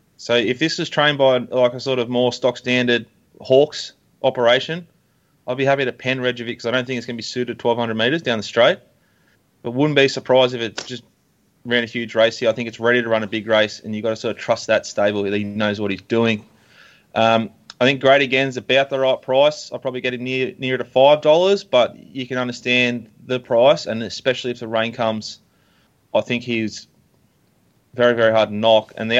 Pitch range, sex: 110-130 Hz, male